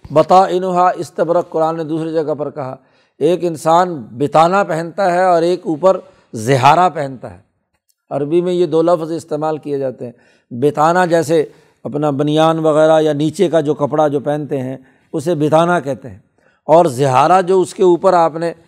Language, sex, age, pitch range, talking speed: Urdu, male, 60-79, 150-180 Hz, 175 wpm